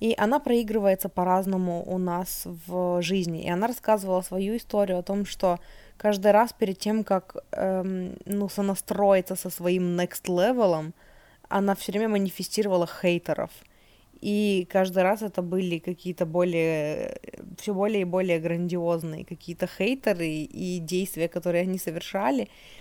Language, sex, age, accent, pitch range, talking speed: Russian, female, 20-39, native, 175-205 Hz, 135 wpm